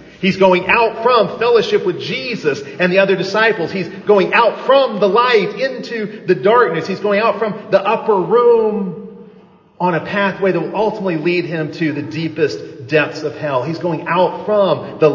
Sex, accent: male, American